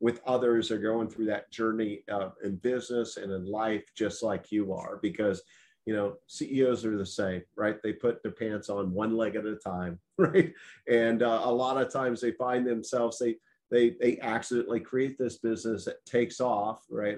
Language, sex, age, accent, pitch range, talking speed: English, male, 40-59, American, 110-135 Hz, 195 wpm